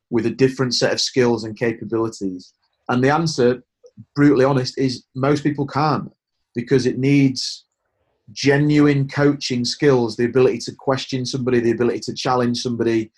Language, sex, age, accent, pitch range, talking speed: English, male, 30-49, British, 120-140 Hz, 150 wpm